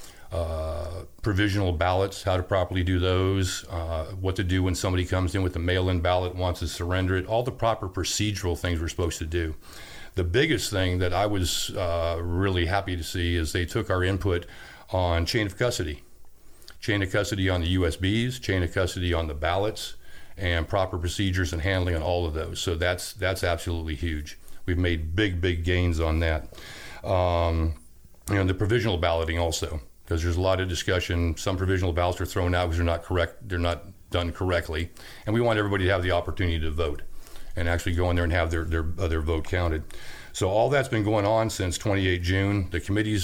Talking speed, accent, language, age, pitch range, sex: 205 wpm, American, English, 50-69, 85-100 Hz, male